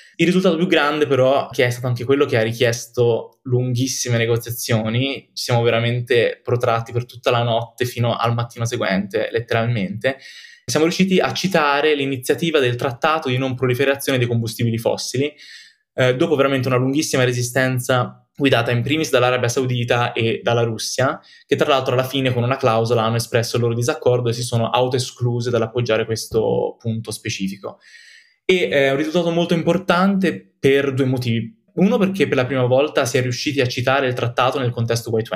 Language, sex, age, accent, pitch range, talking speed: Italian, male, 20-39, native, 120-150 Hz, 170 wpm